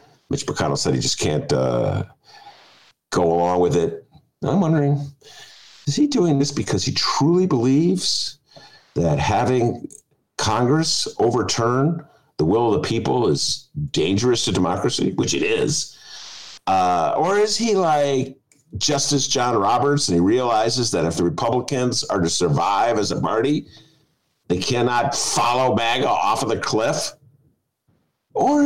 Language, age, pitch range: English, 50-69, 120-155 Hz